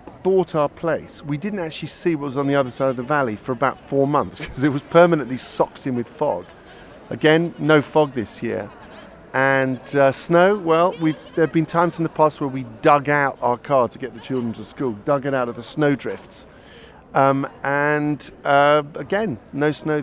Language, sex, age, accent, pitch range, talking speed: English, male, 40-59, British, 125-155 Hz, 210 wpm